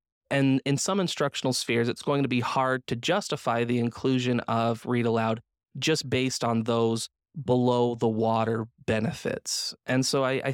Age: 20-39